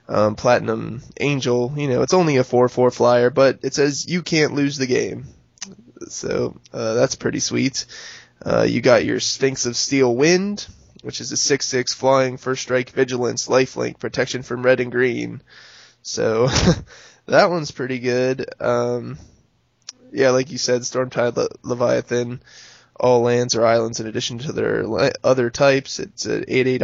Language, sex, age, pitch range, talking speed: English, male, 20-39, 120-135 Hz, 165 wpm